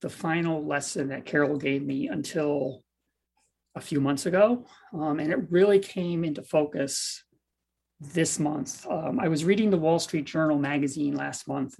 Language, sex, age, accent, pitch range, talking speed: English, male, 40-59, American, 135-180 Hz, 165 wpm